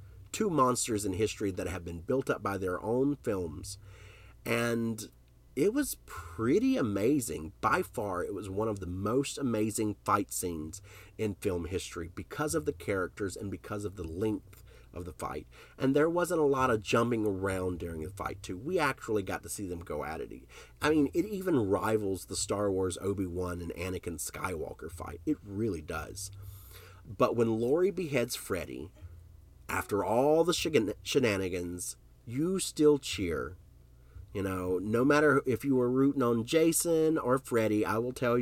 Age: 30-49